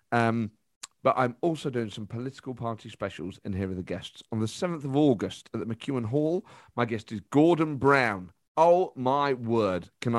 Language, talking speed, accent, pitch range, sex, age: English, 190 wpm, British, 105-145 Hz, male, 40-59